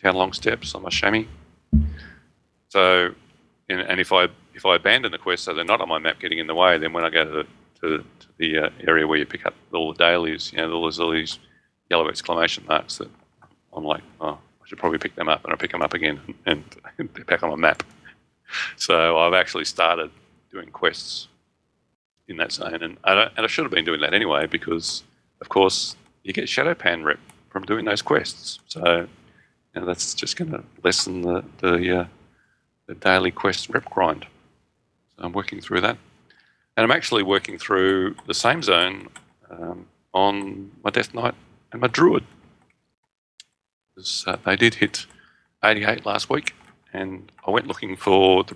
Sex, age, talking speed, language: male, 30-49, 195 wpm, English